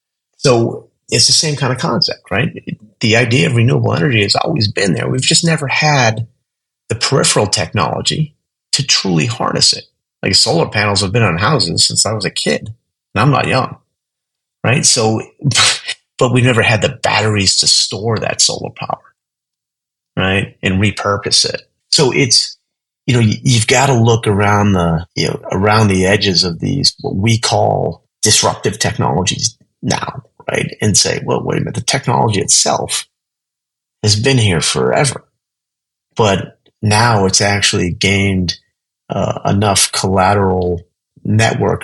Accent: American